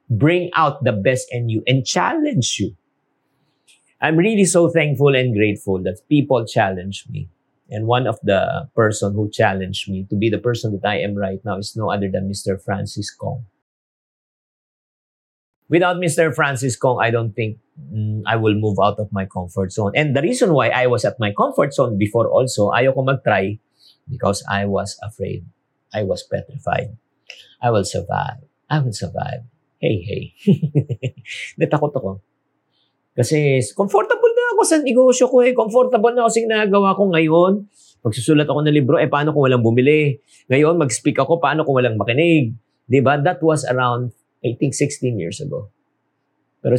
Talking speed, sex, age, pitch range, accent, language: 170 wpm, male, 50-69, 105-150 Hz, Filipino, English